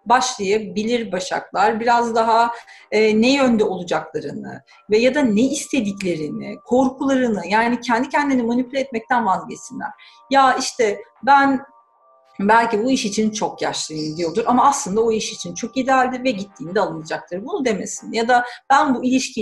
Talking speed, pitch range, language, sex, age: 145 wpm, 210-270 Hz, Turkish, female, 40-59